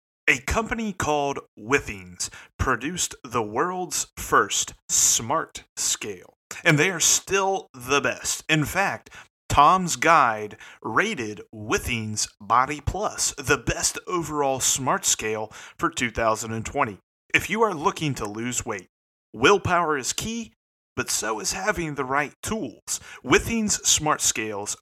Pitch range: 115-175 Hz